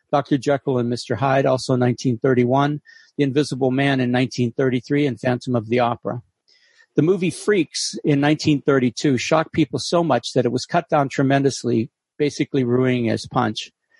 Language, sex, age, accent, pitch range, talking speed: English, male, 50-69, American, 125-155 Hz, 155 wpm